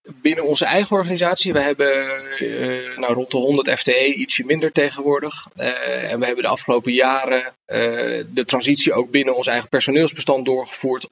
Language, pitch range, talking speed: Dutch, 130-155 Hz, 160 wpm